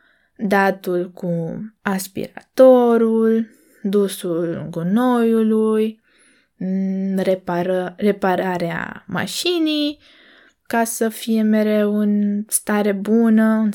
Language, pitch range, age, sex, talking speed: Romanian, 185-230 Hz, 20-39, female, 65 wpm